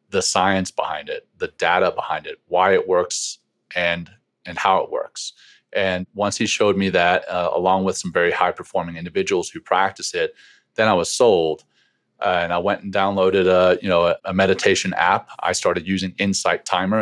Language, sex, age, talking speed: English, male, 30-49, 195 wpm